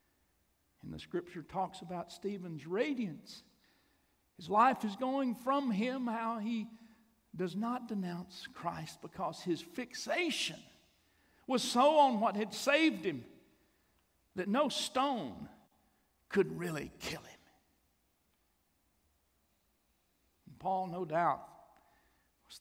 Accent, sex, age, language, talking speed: American, male, 60-79, English, 110 wpm